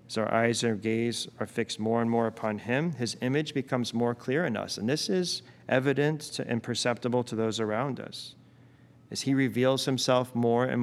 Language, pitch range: English, 115-130 Hz